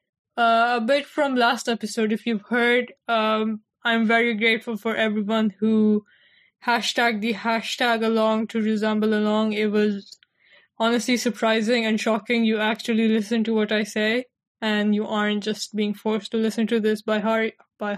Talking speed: 165 wpm